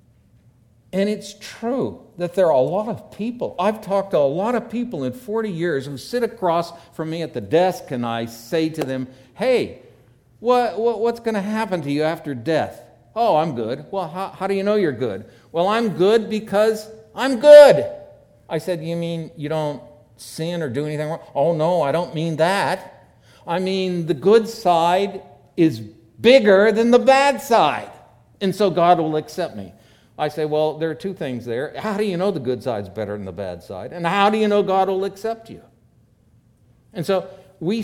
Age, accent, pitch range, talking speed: 60-79, American, 130-205 Hz, 200 wpm